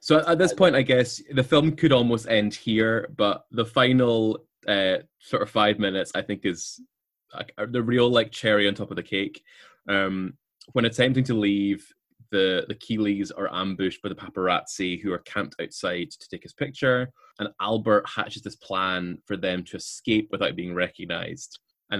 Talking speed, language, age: 180 wpm, English, 20-39